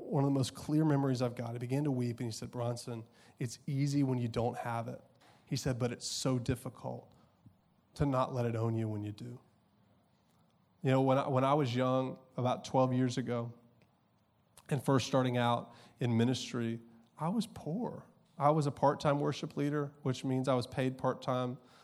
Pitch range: 120-145 Hz